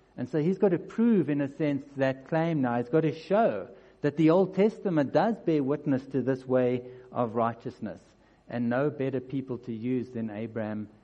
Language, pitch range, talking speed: English, 120-145 Hz, 195 wpm